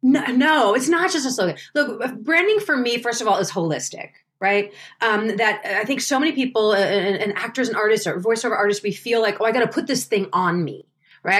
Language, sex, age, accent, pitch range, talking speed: English, female, 30-49, American, 185-260 Hz, 230 wpm